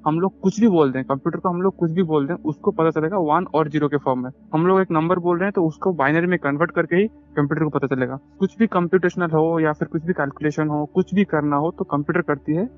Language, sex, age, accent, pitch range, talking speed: Hindi, male, 20-39, native, 150-190 Hz, 275 wpm